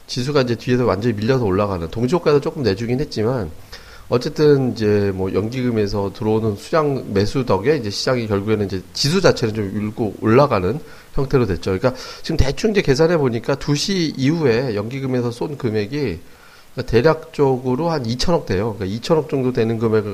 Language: Korean